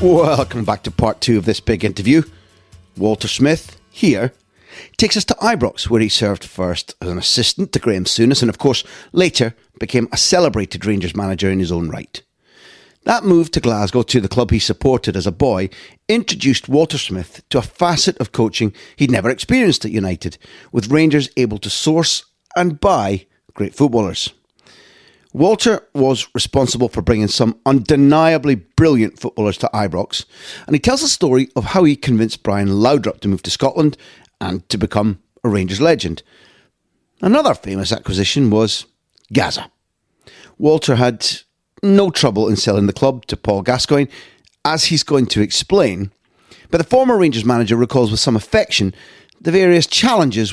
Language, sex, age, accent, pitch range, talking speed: English, male, 40-59, British, 100-145 Hz, 165 wpm